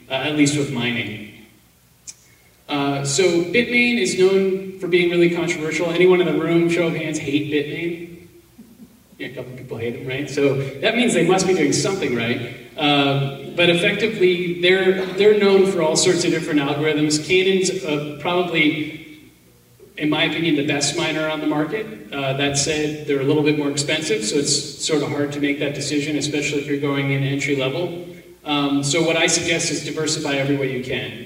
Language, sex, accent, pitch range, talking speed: English, male, American, 140-165 Hz, 190 wpm